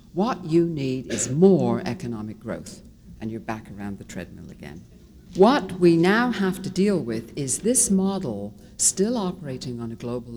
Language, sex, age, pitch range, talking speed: English, female, 60-79, 130-200 Hz, 170 wpm